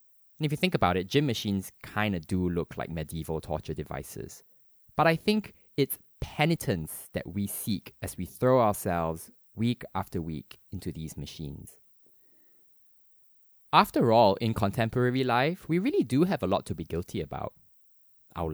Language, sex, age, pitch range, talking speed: English, male, 20-39, 85-115 Hz, 160 wpm